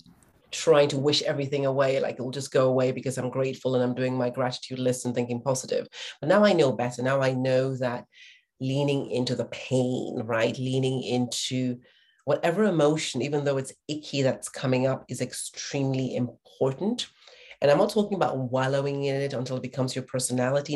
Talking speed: 185 wpm